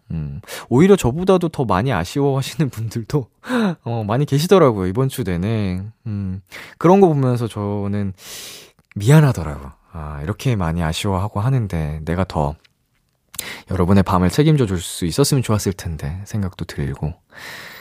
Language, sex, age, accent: Korean, male, 20-39, native